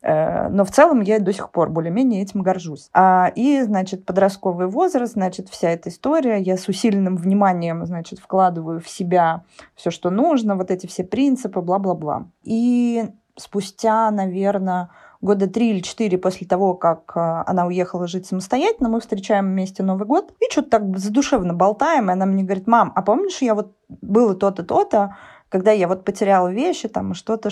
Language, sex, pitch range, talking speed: Russian, female, 185-230 Hz, 170 wpm